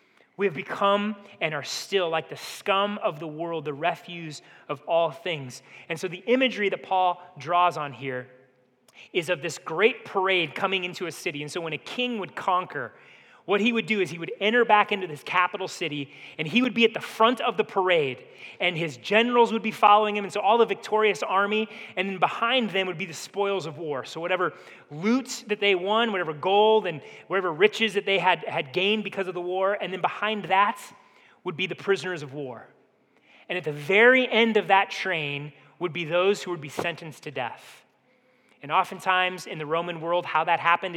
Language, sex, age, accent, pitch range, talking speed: English, male, 30-49, American, 165-205 Hz, 210 wpm